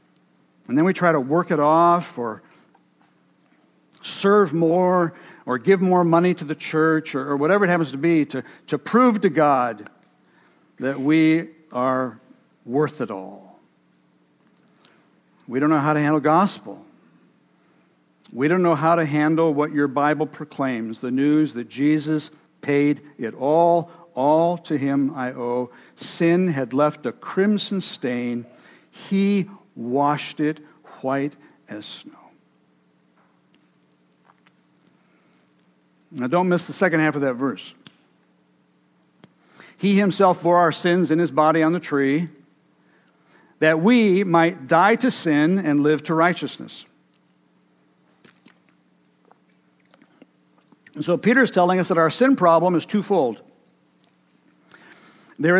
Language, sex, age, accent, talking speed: English, male, 60-79, American, 130 wpm